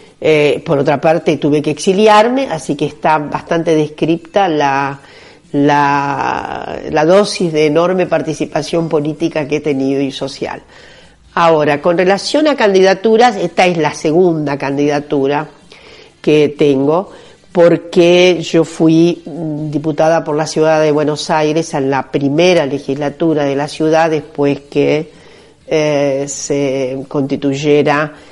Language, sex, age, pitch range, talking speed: Spanish, female, 50-69, 145-170 Hz, 125 wpm